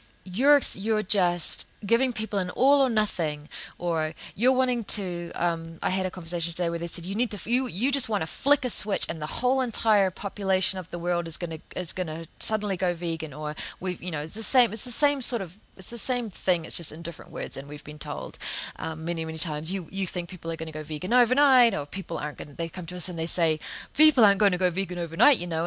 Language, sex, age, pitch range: English, female, 20-39, 170-220 Hz